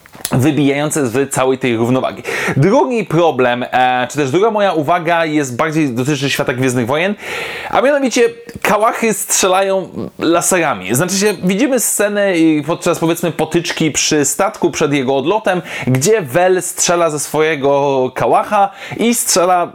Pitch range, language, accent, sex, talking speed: 145-195 Hz, Polish, native, male, 130 wpm